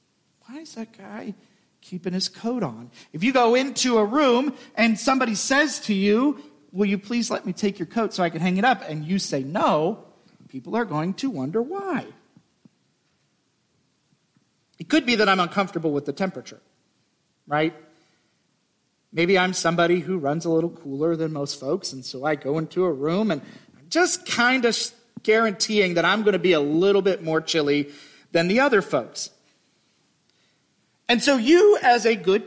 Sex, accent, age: male, American, 40-59